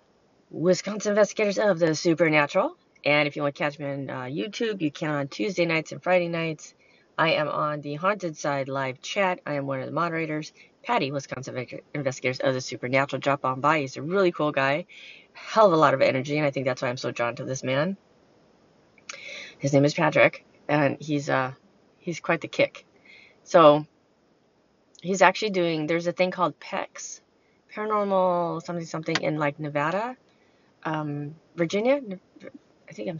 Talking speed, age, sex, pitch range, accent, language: 180 wpm, 30-49, female, 140-185 Hz, American, English